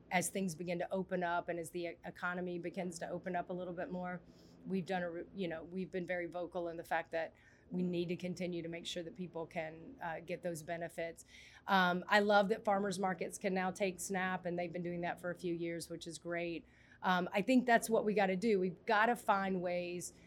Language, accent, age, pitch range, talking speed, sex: English, American, 30-49, 175-195 Hz, 235 wpm, female